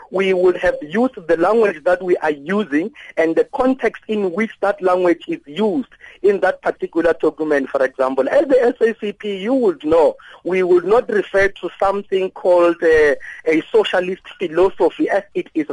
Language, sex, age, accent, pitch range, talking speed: English, male, 50-69, South African, 165-250 Hz, 170 wpm